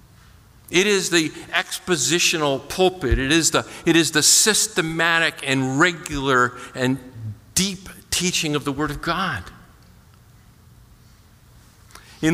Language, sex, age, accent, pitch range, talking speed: English, male, 50-69, American, 125-175 Hz, 110 wpm